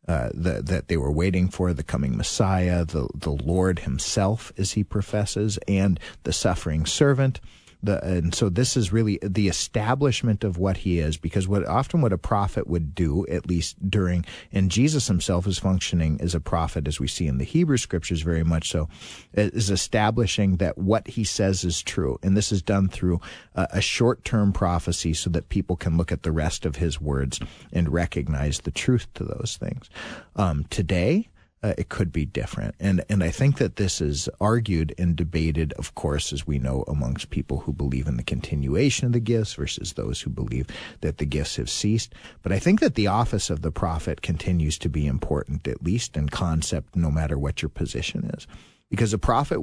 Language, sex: English, male